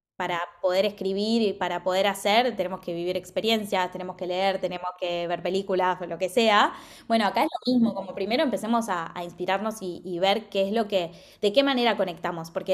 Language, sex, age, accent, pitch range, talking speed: Spanish, female, 20-39, Argentinian, 185-215 Hz, 210 wpm